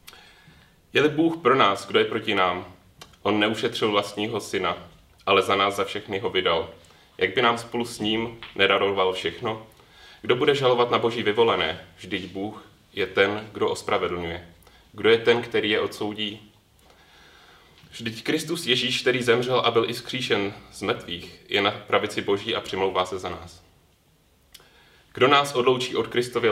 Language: Czech